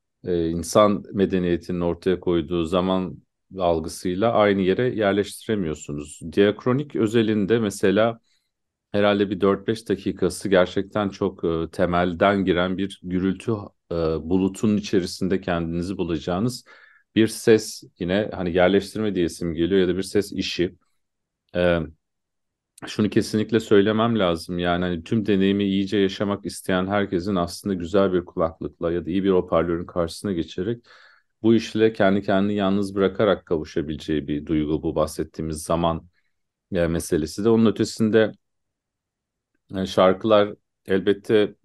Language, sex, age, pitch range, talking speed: Turkish, male, 40-59, 85-105 Hz, 120 wpm